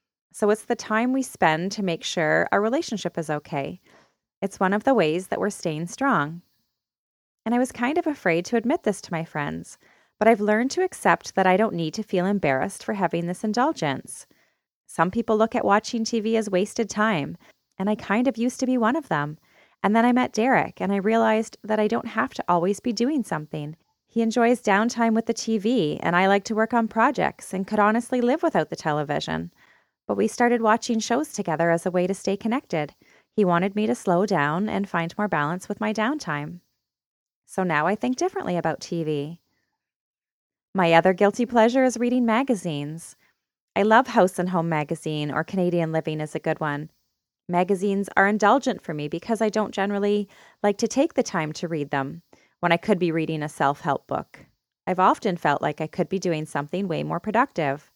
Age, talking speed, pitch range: 30-49, 205 wpm, 165-230 Hz